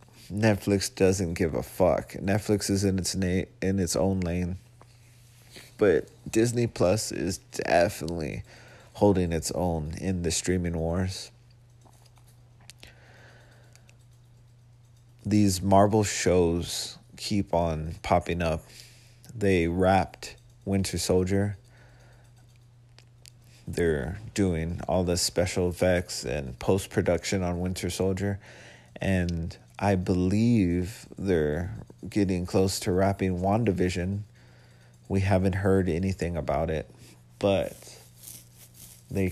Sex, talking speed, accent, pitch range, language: male, 100 wpm, American, 85-110 Hz, English